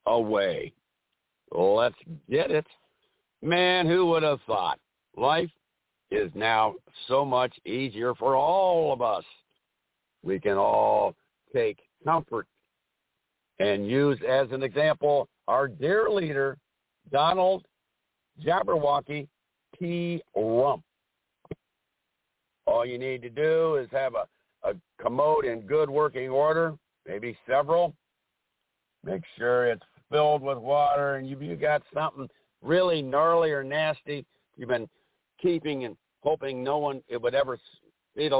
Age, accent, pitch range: 60-79, American, 130-165 Hz